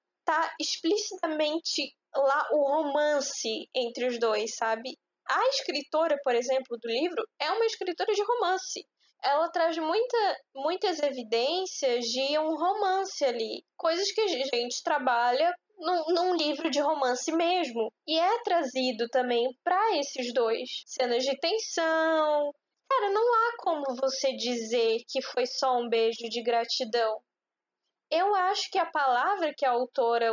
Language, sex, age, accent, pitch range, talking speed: Portuguese, female, 10-29, Brazilian, 245-335 Hz, 140 wpm